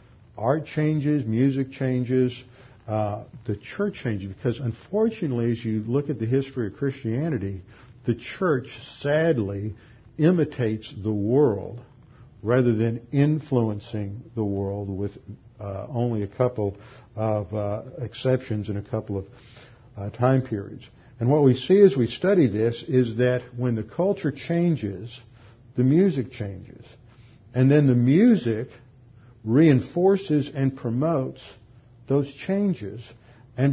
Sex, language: male, English